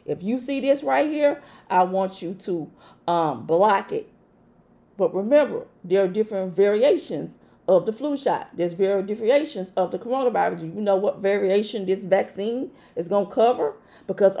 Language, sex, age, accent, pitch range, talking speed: English, female, 40-59, American, 205-255 Hz, 175 wpm